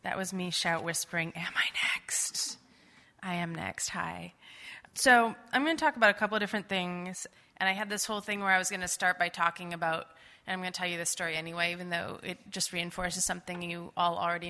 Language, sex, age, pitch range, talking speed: English, female, 20-39, 180-245 Hz, 230 wpm